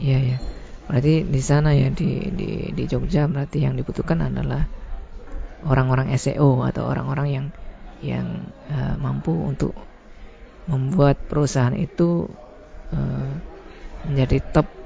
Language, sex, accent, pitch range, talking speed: Indonesian, female, native, 130-155 Hz, 115 wpm